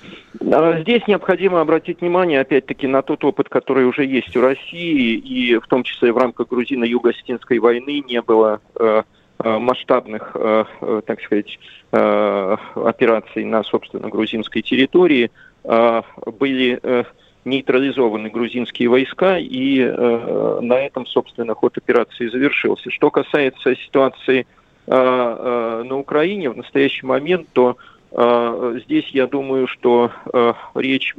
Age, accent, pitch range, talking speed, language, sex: 40-59, native, 115-135 Hz, 110 wpm, Russian, male